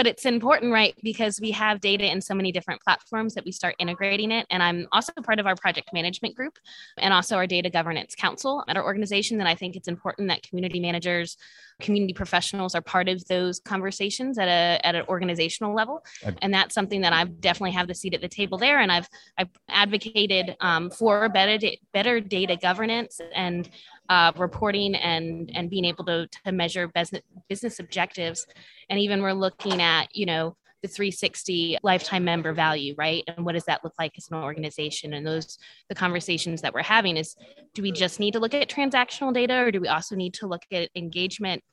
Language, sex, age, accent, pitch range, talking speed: English, female, 20-39, American, 175-210 Hz, 200 wpm